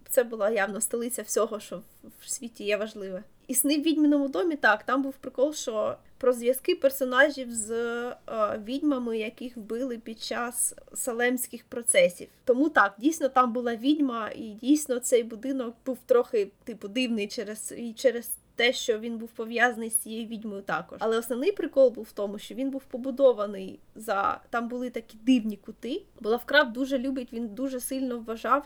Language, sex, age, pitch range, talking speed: Ukrainian, female, 20-39, 225-265 Hz, 170 wpm